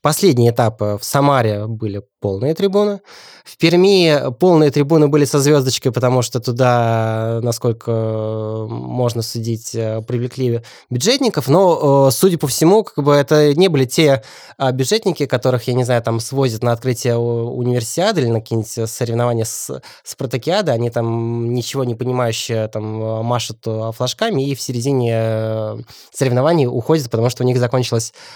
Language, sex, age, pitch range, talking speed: Russian, male, 20-39, 115-135 Hz, 135 wpm